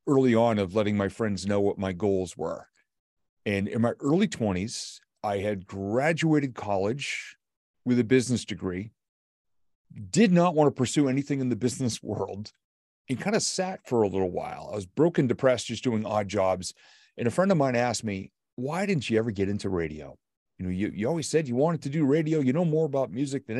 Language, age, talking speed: English, 40-59, 205 wpm